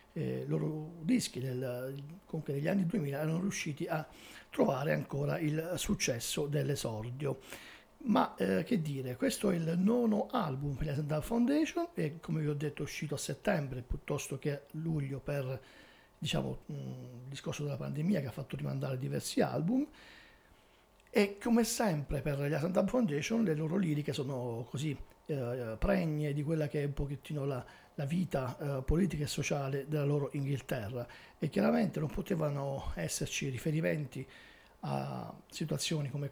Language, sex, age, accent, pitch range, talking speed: Italian, male, 50-69, native, 140-170 Hz, 155 wpm